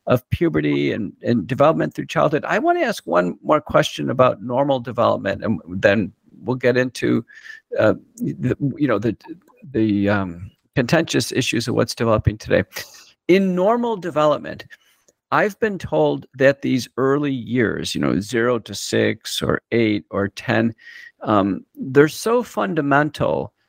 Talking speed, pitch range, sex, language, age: 145 wpm, 115-160 Hz, male, English, 50-69